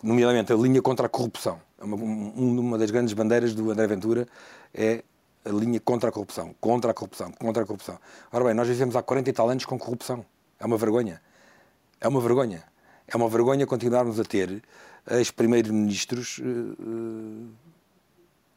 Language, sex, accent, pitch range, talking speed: Portuguese, male, Portuguese, 110-130 Hz, 170 wpm